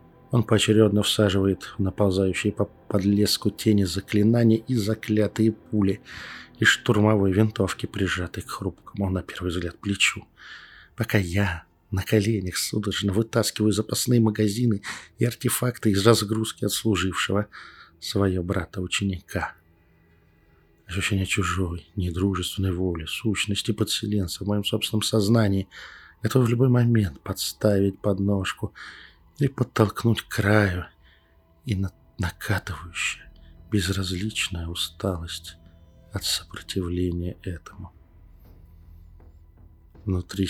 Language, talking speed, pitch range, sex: Russian, 100 wpm, 90-105 Hz, male